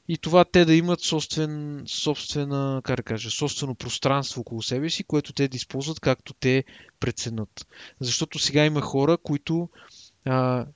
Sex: male